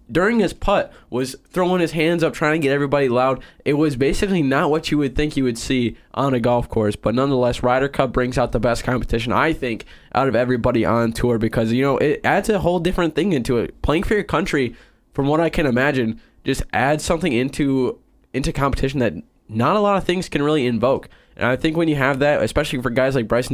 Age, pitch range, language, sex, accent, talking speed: 10-29, 120-150 Hz, English, male, American, 230 wpm